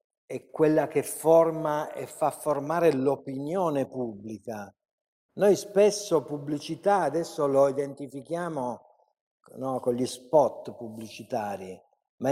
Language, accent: Italian, native